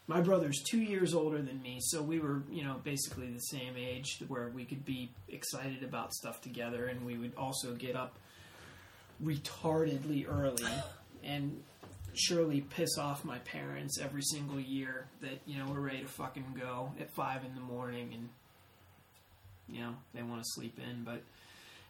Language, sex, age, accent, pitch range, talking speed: English, male, 20-39, American, 125-160 Hz, 175 wpm